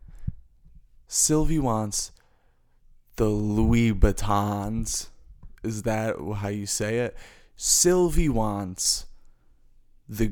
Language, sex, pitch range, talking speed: English, male, 75-110 Hz, 80 wpm